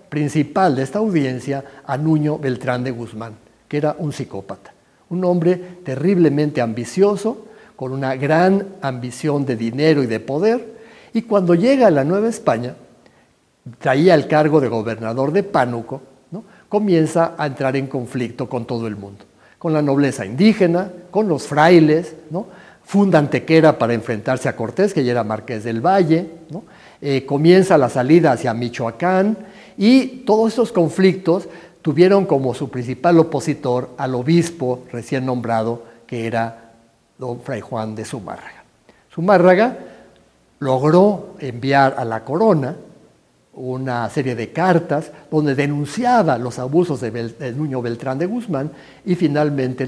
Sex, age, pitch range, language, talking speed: male, 50-69, 125-175 Hz, Spanish, 140 wpm